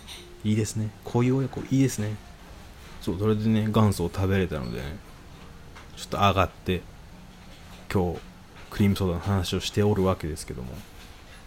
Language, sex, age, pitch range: Japanese, male, 20-39, 90-105 Hz